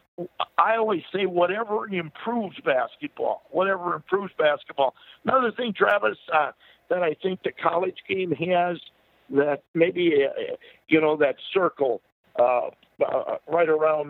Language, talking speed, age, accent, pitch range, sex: English, 130 wpm, 60-79, American, 150-190 Hz, male